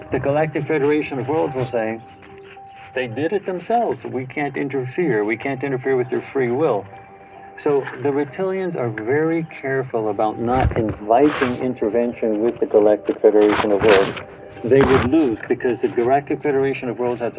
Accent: American